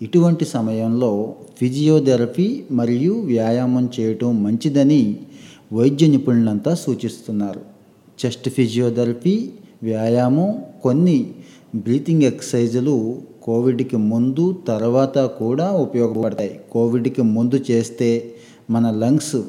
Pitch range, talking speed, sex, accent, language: 110-135 Hz, 80 wpm, male, native, Telugu